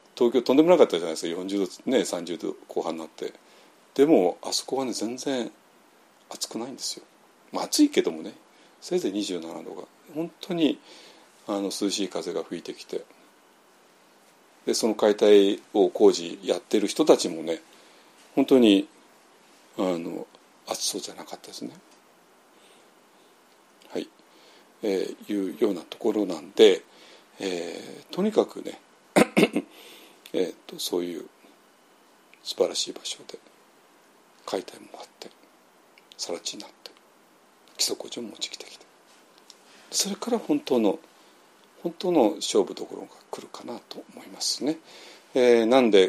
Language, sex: Japanese, male